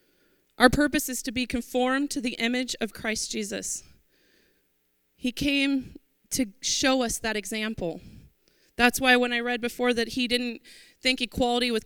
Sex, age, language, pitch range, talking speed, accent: female, 30-49, English, 205-260 Hz, 155 wpm, American